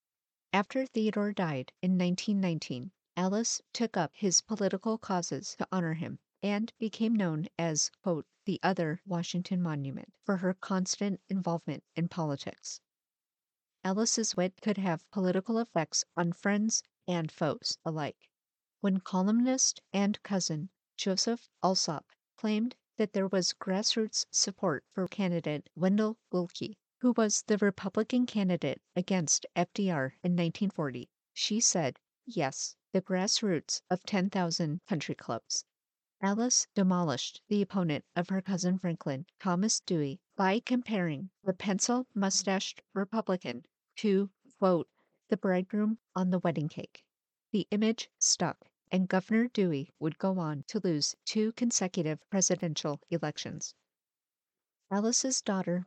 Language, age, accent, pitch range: English, 50-69, American, 170-210 Hz